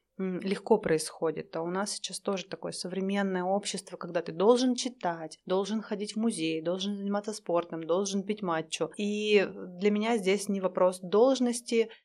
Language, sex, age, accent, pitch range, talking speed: Russian, female, 20-39, native, 180-205 Hz, 155 wpm